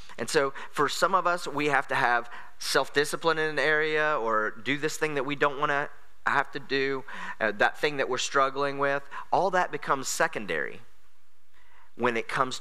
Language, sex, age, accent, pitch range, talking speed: English, male, 30-49, American, 115-165 Hz, 190 wpm